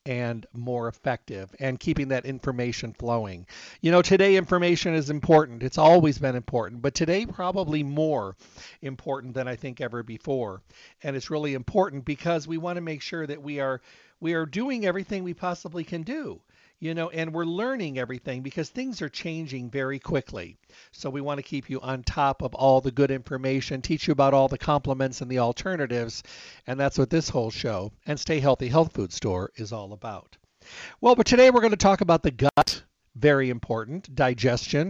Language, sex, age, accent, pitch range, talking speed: English, male, 50-69, American, 125-160 Hz, 190 wpm